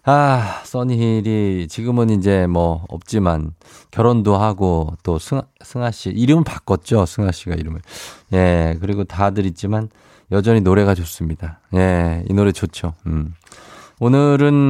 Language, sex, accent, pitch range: Korean, male, native, 95-130 Hz